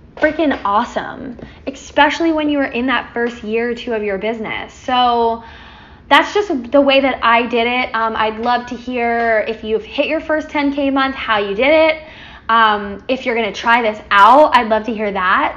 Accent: American